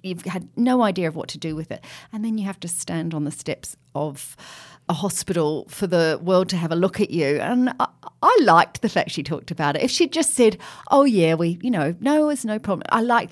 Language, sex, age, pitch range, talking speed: English, female, 40-59, 145-185 Hz, 250 wpm